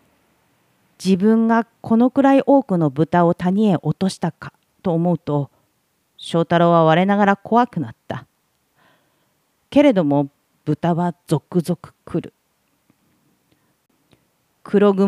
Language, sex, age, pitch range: Japanese, female, 40-59, 150-200 Hz